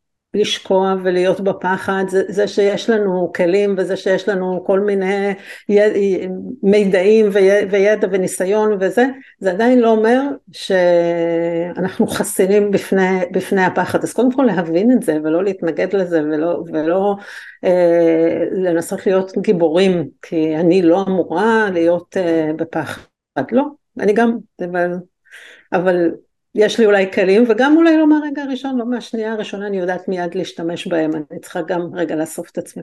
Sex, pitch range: female, 180-225 Hz